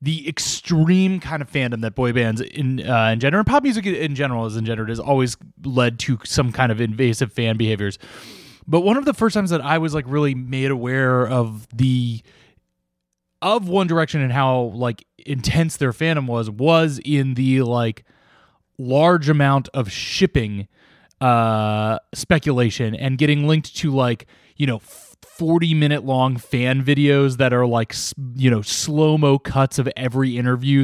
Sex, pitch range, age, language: male, 120-150 Hz, 20-39, English